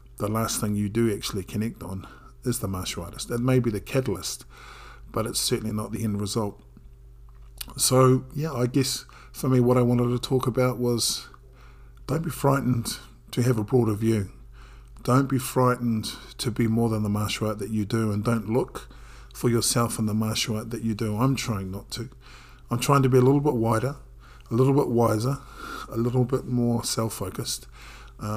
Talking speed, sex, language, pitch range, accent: 195 wpm, male, English, 110-125 Hz, British